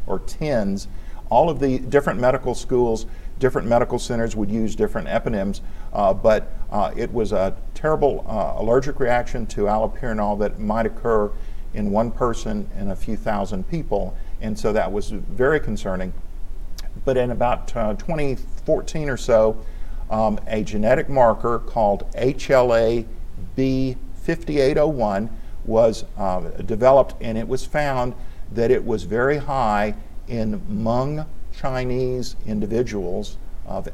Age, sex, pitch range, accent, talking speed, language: 50-69, male, 95-125 Hz, American, 135 wpm, English